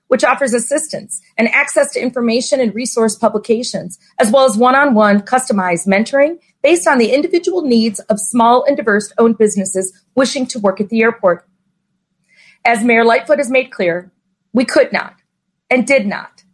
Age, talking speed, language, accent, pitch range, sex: 40-59, 160 wpm, English, American, 195-265 Hz, female